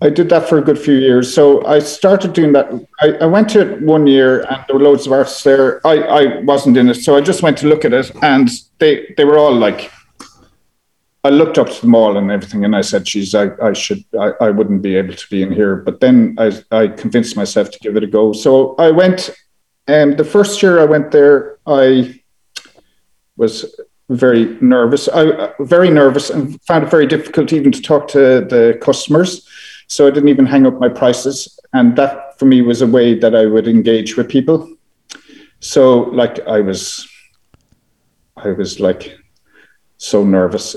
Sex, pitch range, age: male, 115-155 Hz, 50-69